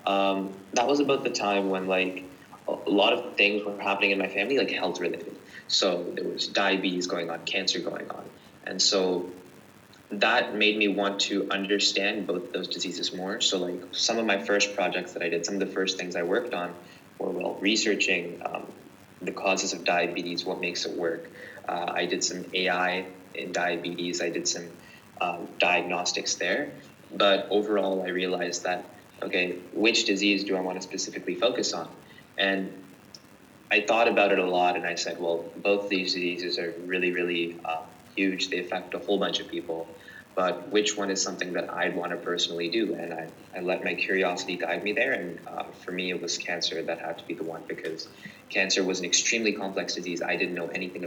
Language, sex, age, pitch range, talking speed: English, male, 20-39, 90-100 Hz, 200 wpm